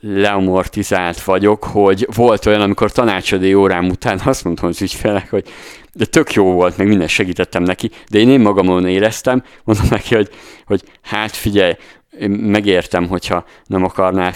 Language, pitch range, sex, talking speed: Hungarian, 95-115 Hz, male, 160 wpm